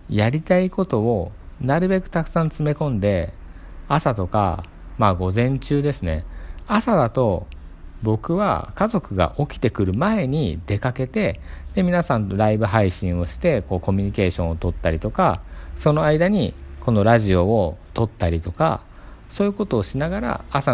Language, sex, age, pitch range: Japanese, male, 50-69, 90-135 Hz